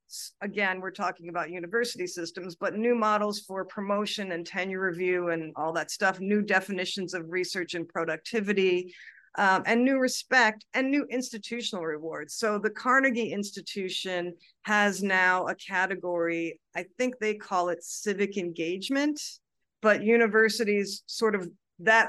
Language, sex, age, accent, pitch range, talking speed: English, female, 50-69, American, 180-220 Hz, 140 wpm